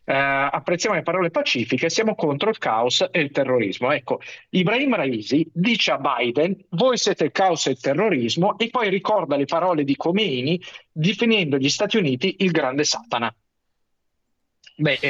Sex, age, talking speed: male, 50-69, 155 wpm